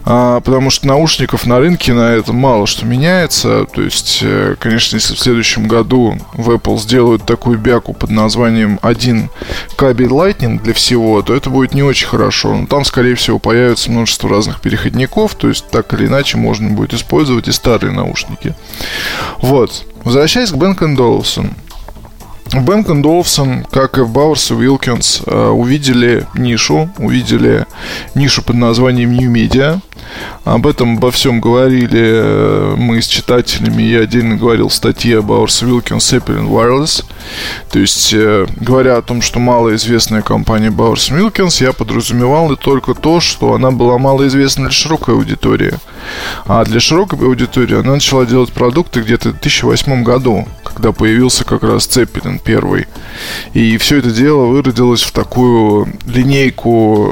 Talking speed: 150 wpm